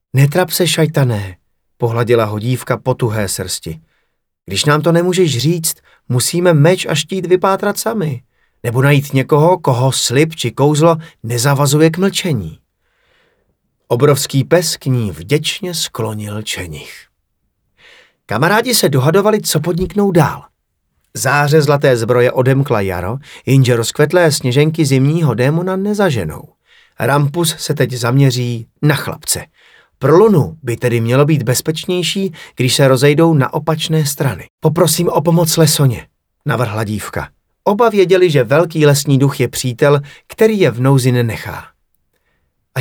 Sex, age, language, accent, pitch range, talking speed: male, 30-49, Czech, native, 125-165 Hz, 130 wpm